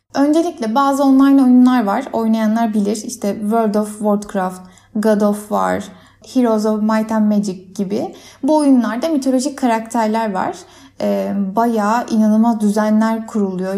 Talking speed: 125 wpm